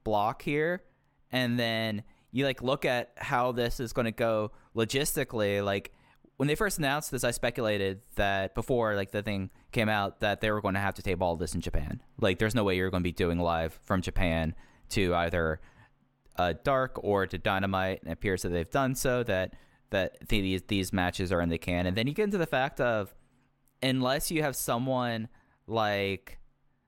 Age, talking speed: 20-39, 200 wpm